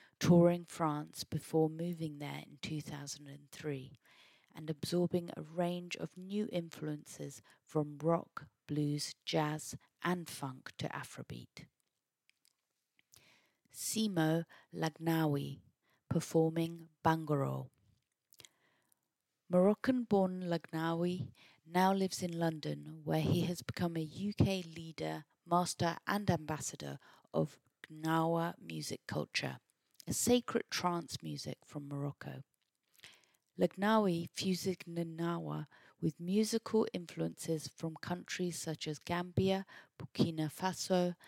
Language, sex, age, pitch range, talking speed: English, female, 30-49, 145-180 Hz, 95 wpm